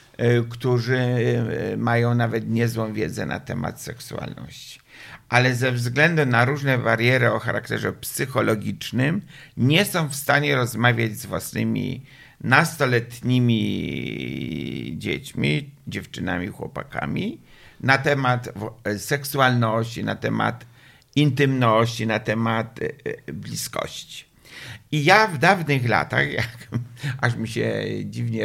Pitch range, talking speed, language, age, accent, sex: 115-135 Hz, 100 wpm, Polish, 50-69, native, male